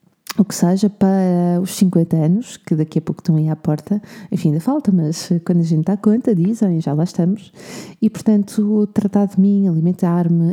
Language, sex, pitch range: Portuguese, female, 175-210 Hz